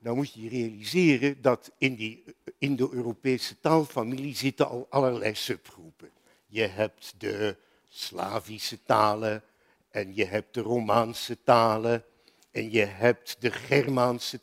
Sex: male